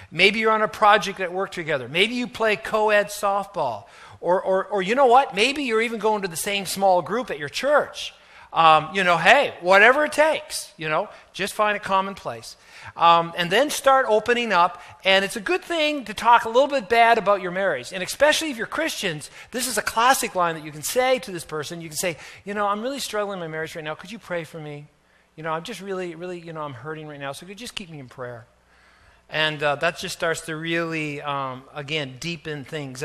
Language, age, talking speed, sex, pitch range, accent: English, 40-59, 240 wpm, male, 160-220 Hz, American